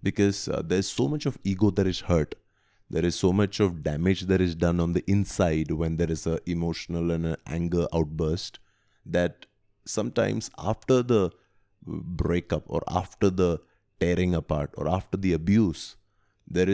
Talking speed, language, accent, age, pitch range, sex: 165 wpm, English, Indian, 30-49, 85-100 Hz, male